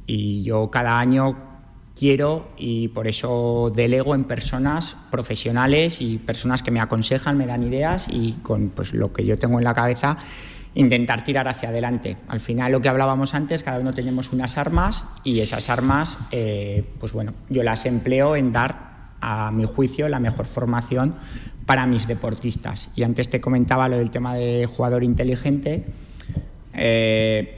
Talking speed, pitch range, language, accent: 165 wpm, 115-130 Hz, Spanish, Spanish